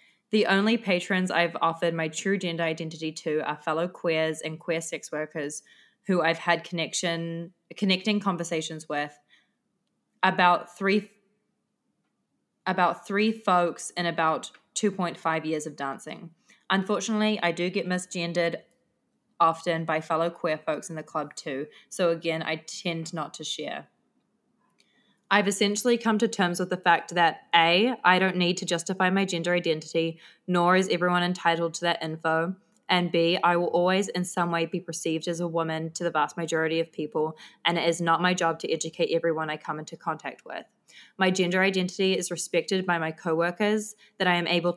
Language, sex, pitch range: English, female, 165-190 Hz